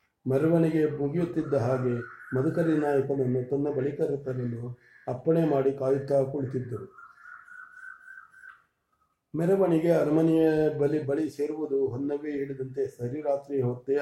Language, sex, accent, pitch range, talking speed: English, male, Indian, 130-155 Hz, 130 wpm